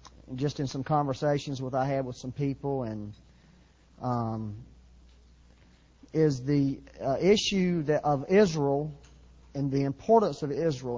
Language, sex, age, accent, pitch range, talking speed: English, male, 40-59, American, 125-155 Hz, 130 wpm